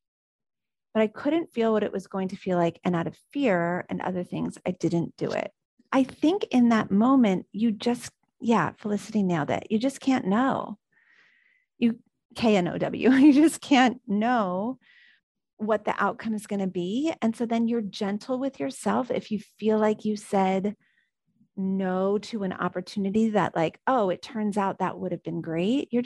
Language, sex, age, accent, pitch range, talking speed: English, female, 30-49, American, 190-235 Hz, 180 wpm